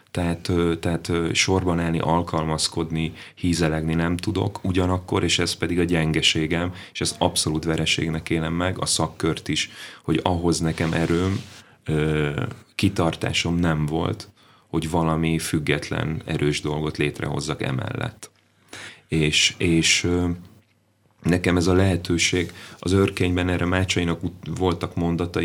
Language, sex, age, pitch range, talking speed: Hungarian, male, 30-49, 80-90 Hz, 115 wpm